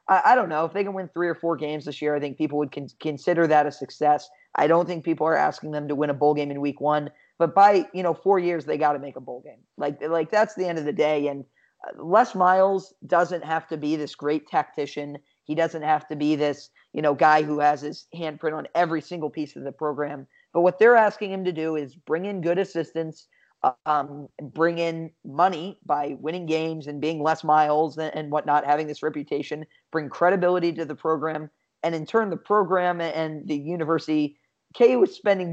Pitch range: 150-170 Hz